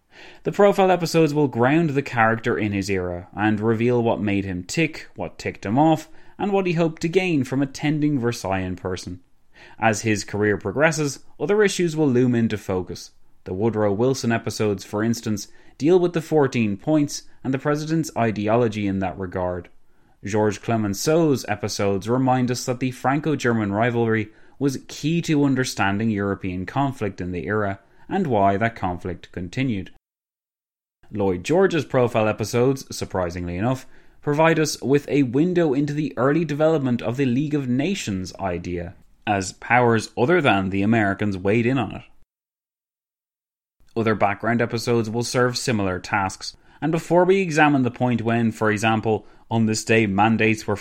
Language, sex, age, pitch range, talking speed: English, male, 20-39, 100-140 Hz, 160 wpm